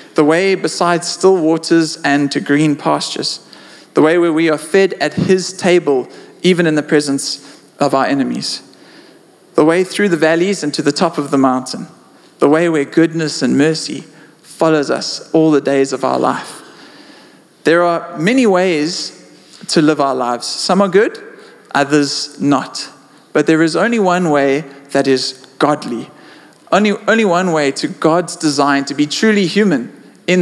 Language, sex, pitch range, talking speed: English, male, 145-185 Hz, 170 wpm